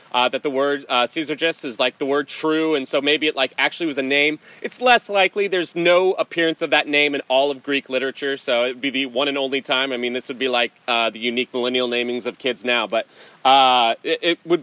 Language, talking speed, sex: English, 255 wpm, male